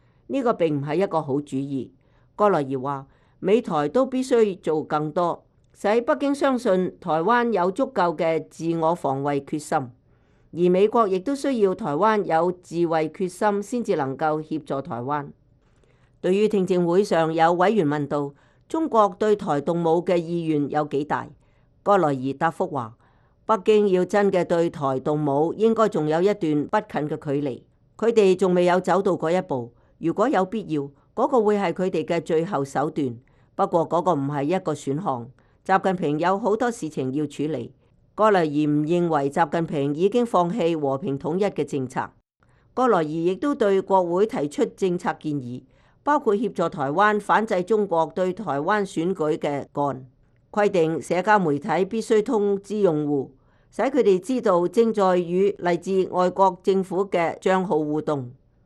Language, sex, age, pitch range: English, female, 50-69, 145-200 Hz